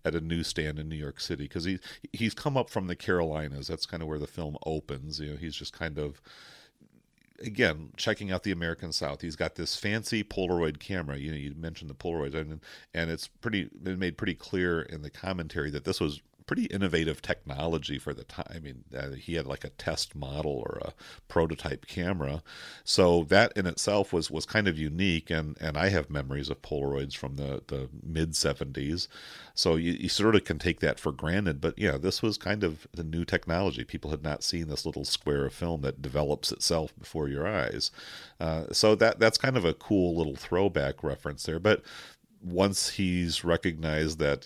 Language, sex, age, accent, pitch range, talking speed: English, male, 40-59, American, 75-90 Hz, 210 wpm